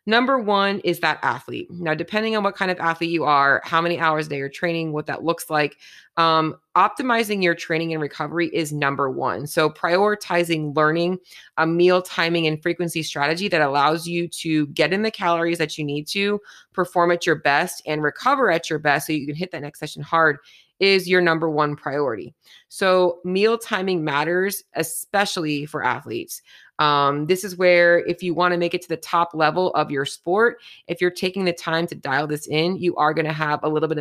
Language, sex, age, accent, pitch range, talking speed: English, female, 30-49, American, 150-180 Hz, 210 wpm